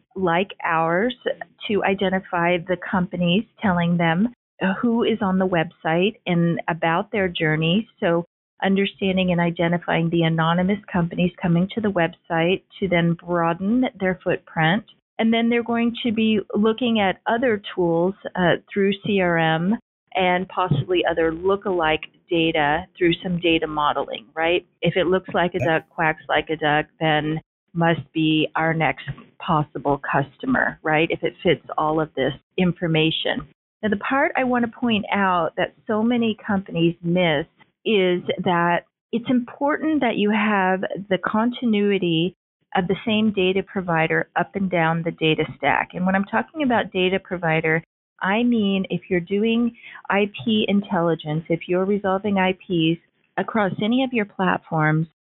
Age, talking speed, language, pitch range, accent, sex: 40-59, 150 wpm, English, 165-205 Hz, American, female